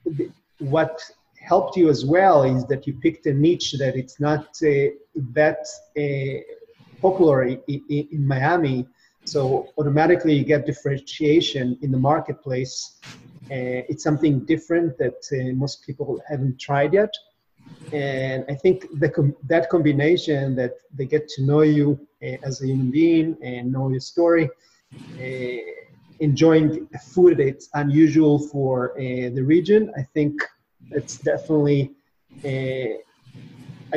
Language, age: English, 30-49